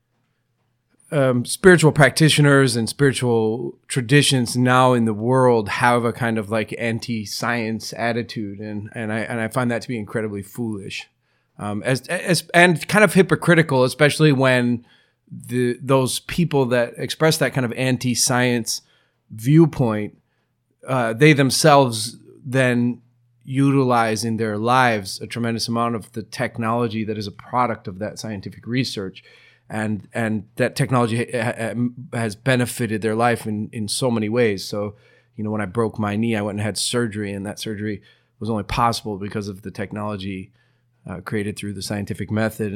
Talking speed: 155 wpm